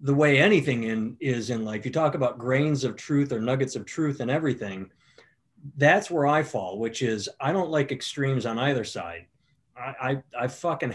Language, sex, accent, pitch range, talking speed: English, male, American, 120-145 Hz, 195 wpm